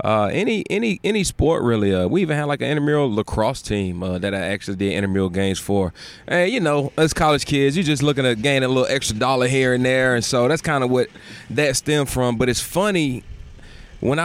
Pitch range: 105-135 Hz